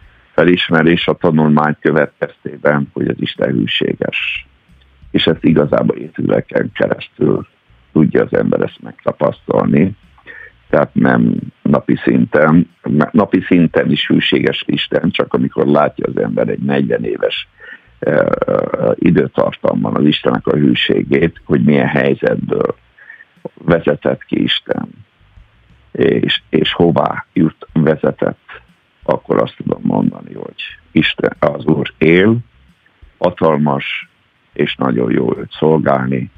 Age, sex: 60-79, male